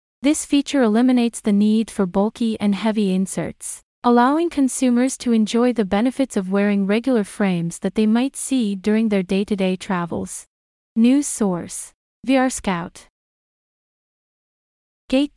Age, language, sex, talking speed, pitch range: 30-49, English, female, 130 wpm, 200-250 Hz